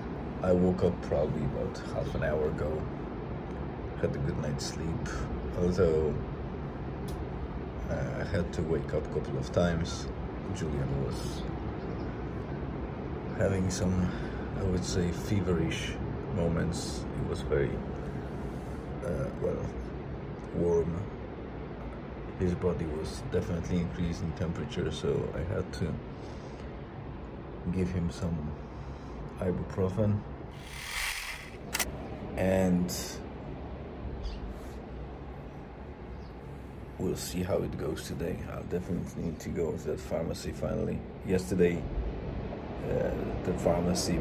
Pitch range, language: 70-90 Hz, English